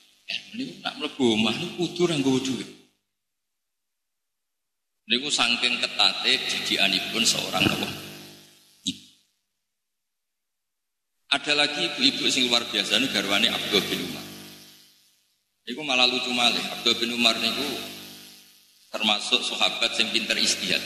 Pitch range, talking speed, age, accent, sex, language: 110-140 Hz, 120 wpm, 50-69, native, male, Indonesian